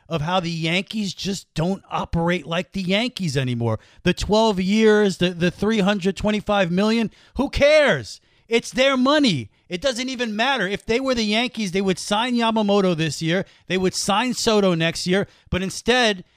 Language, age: English, 40-59